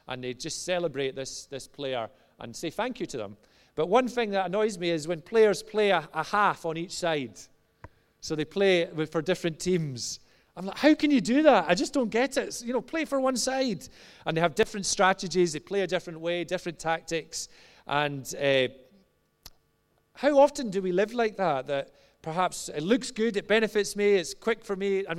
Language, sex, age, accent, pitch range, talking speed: English, male, 30-49, British, 150-195 Hz, 210 wpm